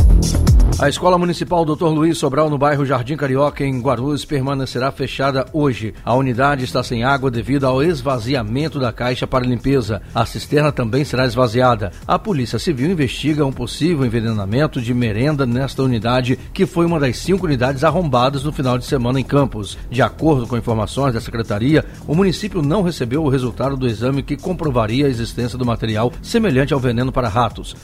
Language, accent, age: Portuguese, Brazilian, 60-79